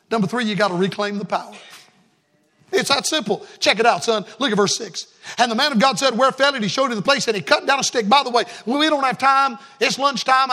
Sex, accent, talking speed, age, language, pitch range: male, American, 270 wpm, 50-69, English, 230-295 Hz